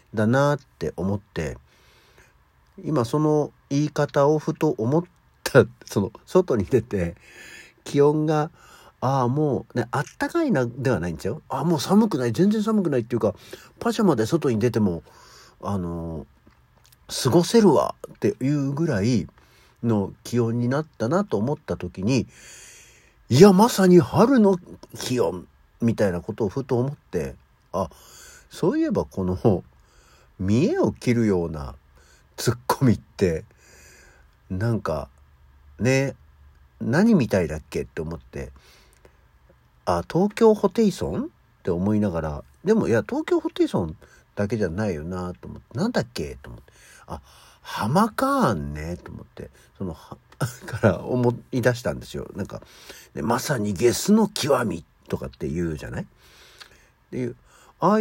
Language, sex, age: Japanese, male, 50-69